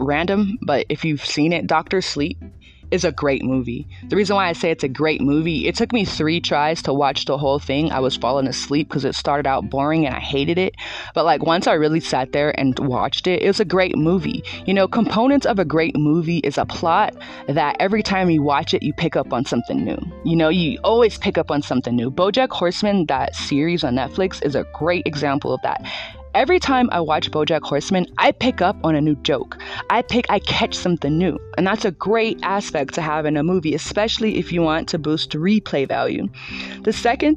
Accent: American